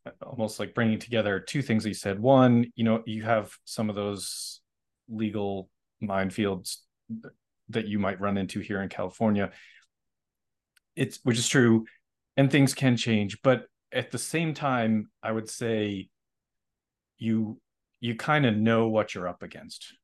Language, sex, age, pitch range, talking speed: English, male, 30-49, 100-115 Hz, 155 wpm